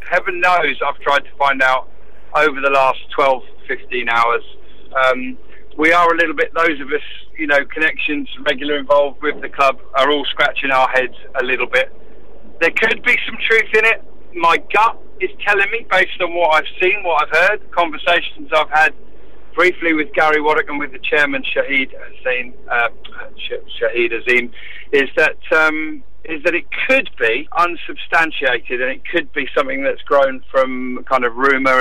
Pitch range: 135-180 Hz